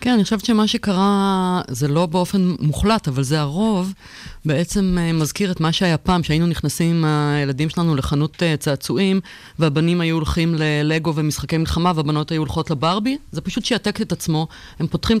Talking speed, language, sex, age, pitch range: 165 wpm, Hebrew, female, 30-49, 145-185 Hz